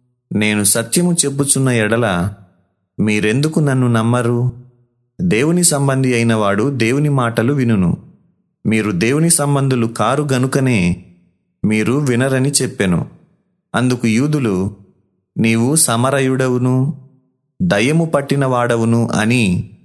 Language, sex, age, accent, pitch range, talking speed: Telugu, male, 30-49, native, 110-140 Hz, 80 wpm